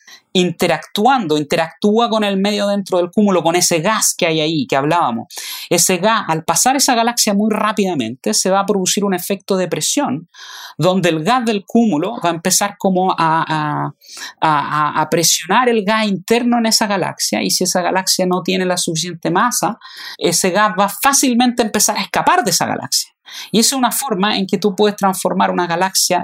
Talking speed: 190 wpm